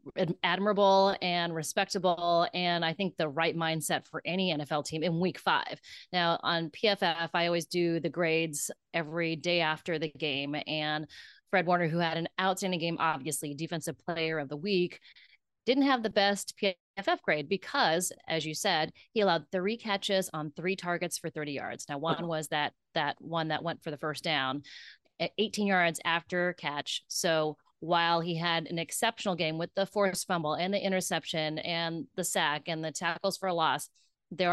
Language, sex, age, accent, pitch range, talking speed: English, female, 30-49, American, 160-185 Hz, 180 wpm